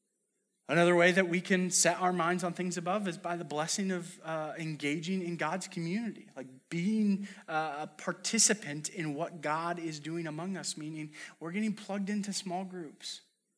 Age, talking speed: 30-49, 170 wpm